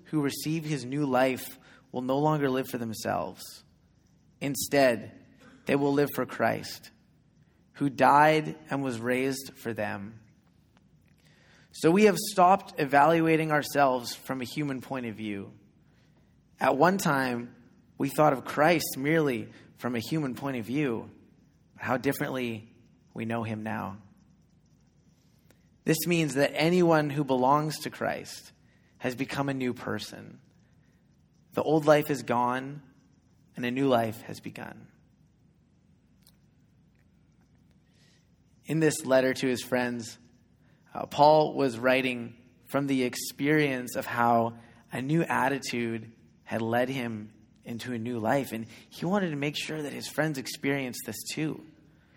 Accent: American